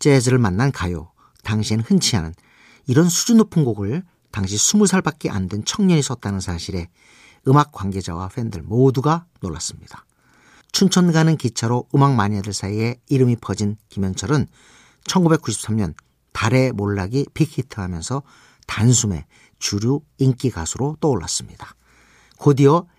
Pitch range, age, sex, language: 100-150 Hz, 50-69, male, Korean